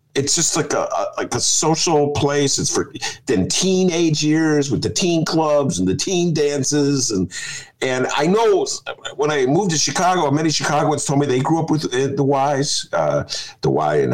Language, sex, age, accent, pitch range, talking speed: English, male, 50-69, American, 130-165 Hz, 195 wpm